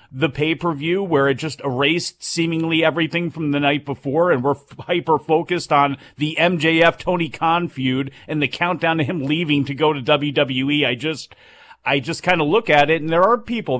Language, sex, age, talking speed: English, male, 40-59, 210 wpm